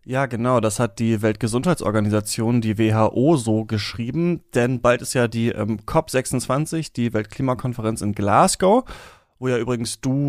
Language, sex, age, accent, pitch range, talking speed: German, male, 30-49, German, 110-140 Hz, 145 wpm